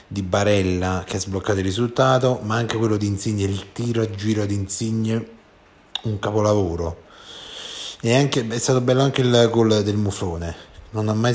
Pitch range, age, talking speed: 95-120 Hz, 30-49, 175 wpm